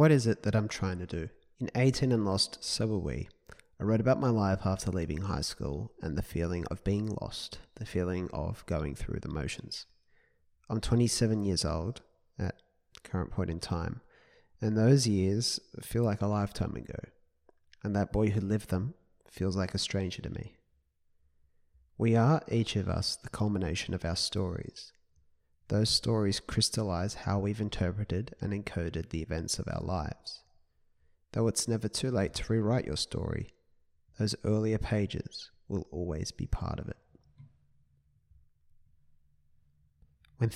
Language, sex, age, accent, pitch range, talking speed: English, male, 30-49, Australian, 85-110 Hz, 160 wpm